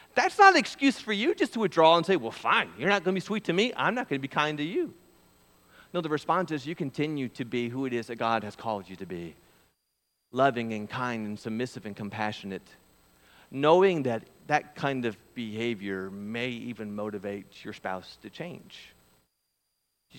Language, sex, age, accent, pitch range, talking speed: English, male, 40-59, American, 105-145 Hz, 200 wpm